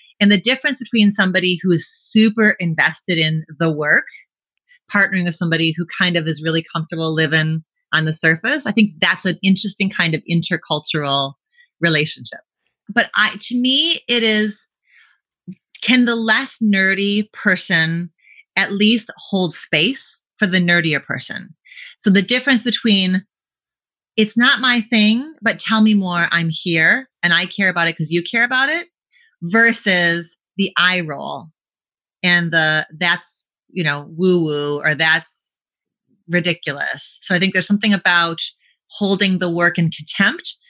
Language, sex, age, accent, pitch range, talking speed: English, female, 30-49, American, 165-220 Hz, 150 wpm